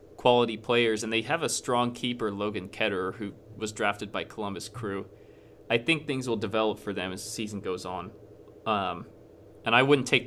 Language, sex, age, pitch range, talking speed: English, male, 20-39, 105-130 Hz, 185 wpm